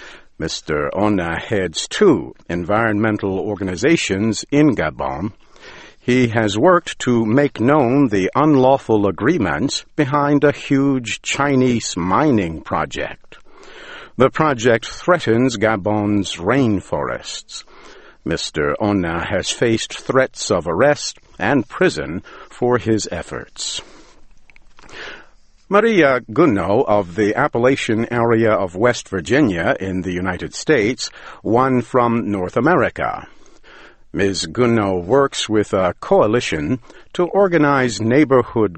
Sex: male